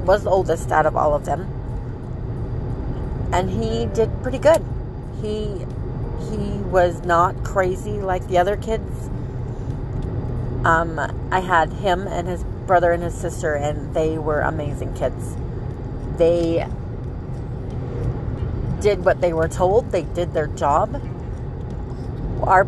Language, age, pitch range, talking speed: English, 30-49, 120-165 Hz, 125 wpm